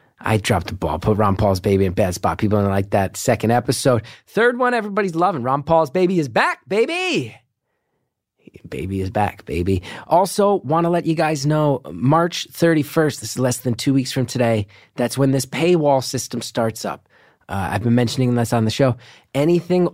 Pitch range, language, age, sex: 115-150 Hz, English, 30-49, male